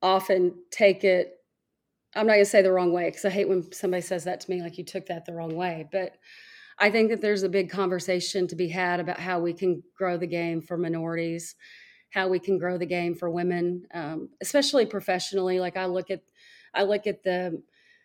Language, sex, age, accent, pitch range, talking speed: English, female, 30-49, American, 180-205 Hz, 215 wpm